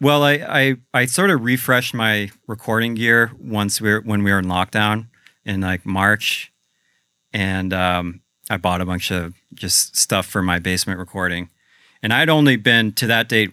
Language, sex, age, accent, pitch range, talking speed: English, male, 40-59, American, 90-115 Hz, 180 wpm